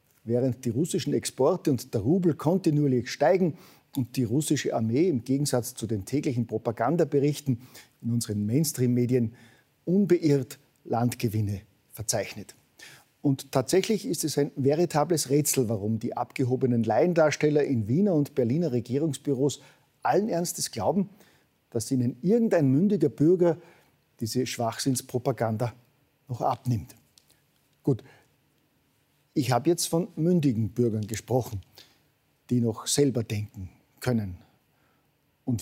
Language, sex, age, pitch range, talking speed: German, male, 50-69, 120-155 Hz, 115 wpm